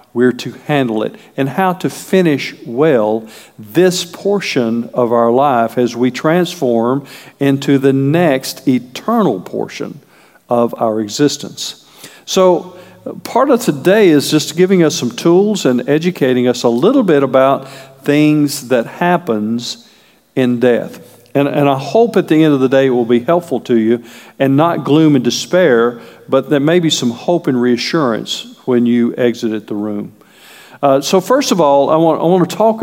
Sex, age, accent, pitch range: male, 50-69, American, 125-170 Hz